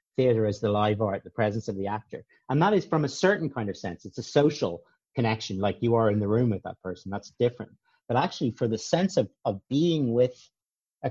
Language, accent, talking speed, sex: English, British, 240 wpm, male